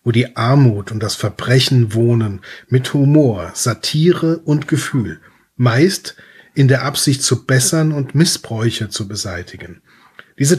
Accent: German